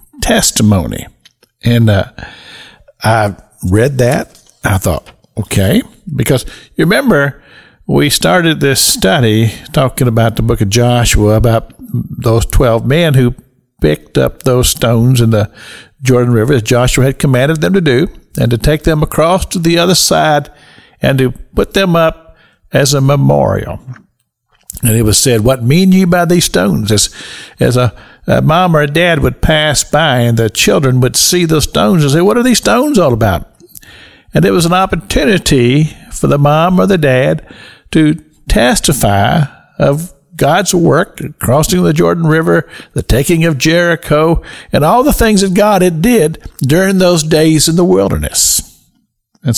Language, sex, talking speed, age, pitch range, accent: English, male, 160 wpm, 50-69, 115-165 Hz, American